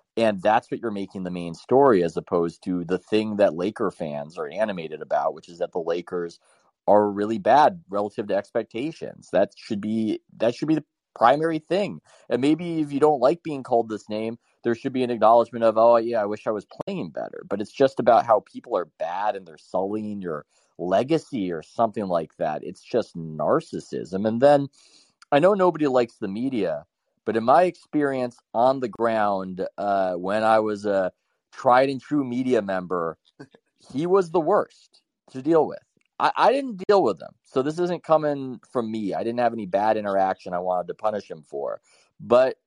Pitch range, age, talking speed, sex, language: 100-135 Hz, 30-49, 195 wpm, male, English